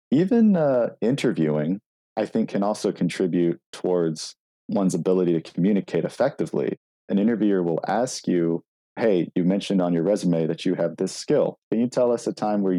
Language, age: English, 40-59